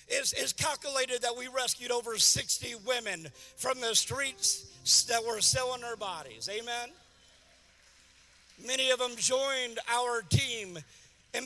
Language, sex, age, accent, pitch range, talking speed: English, male, 50-69, American, 215-260 Hz, 130 wpm